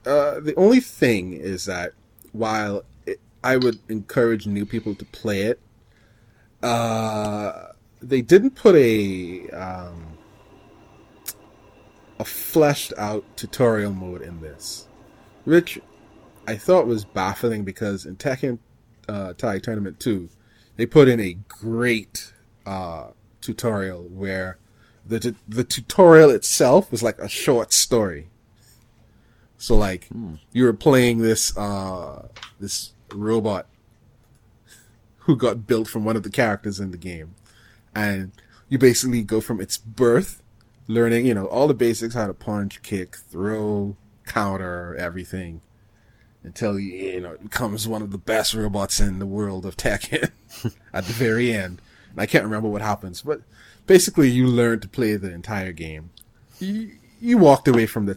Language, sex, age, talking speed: English, male, 30-49, 140 wpm